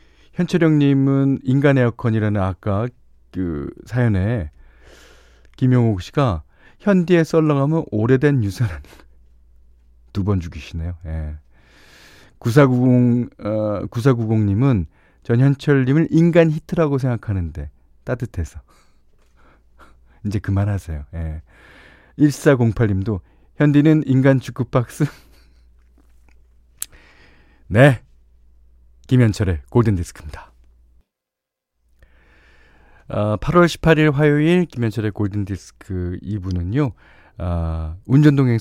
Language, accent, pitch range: Korean, native, 80-125 Hz